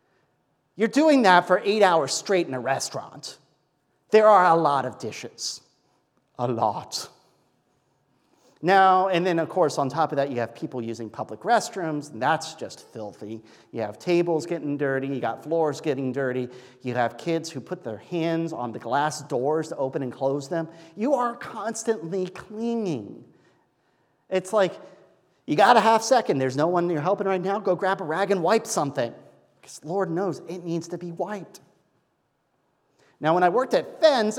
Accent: American